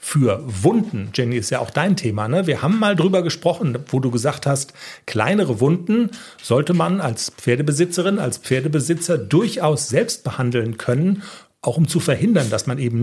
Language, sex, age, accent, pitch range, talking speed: German, male, 40-59, German, 125-175 Hz, 165 wpm